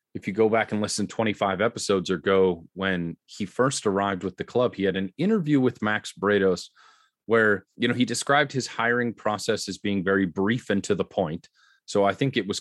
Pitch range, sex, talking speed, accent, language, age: 95-125 Hz, male, 215 wpm, American, English, 30-49